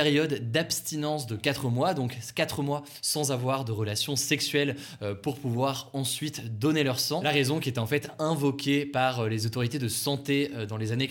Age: 20-39